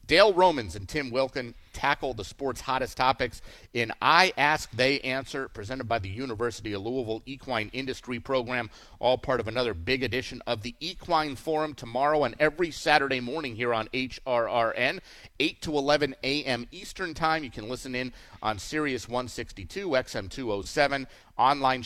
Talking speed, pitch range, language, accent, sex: 160 wpm, 115-145 Hz, English, American, male